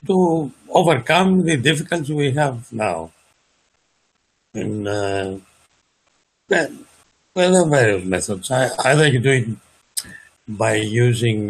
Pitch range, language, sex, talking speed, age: 105-150 Hz, English, male, 120 wpm, 60-79